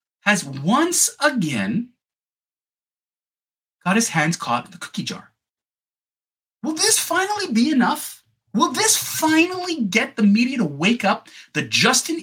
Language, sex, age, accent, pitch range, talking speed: English, male, 30-49, American, 195-310 Hz, 130 wpm